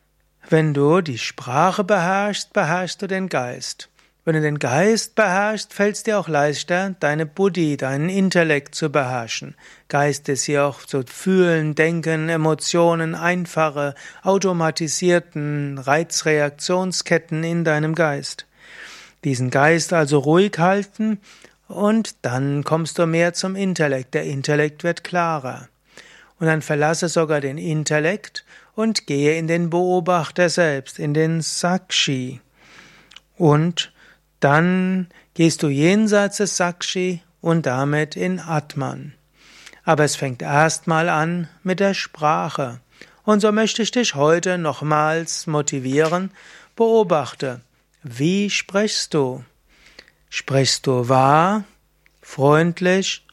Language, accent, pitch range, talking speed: German, German, 150-185 Hz, 120 wpm